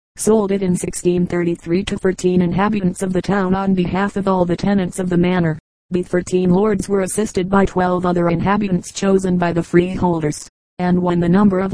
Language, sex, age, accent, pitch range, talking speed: English, female, 30-49, American, 180-195 Hz, 190 wpm